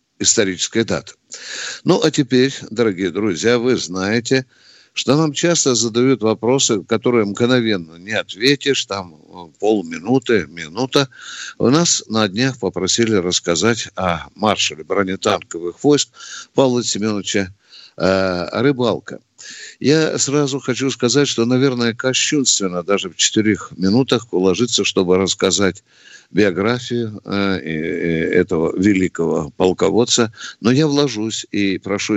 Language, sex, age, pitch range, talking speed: Russian, male, 60-79, 95-130 Hz, 105 wpm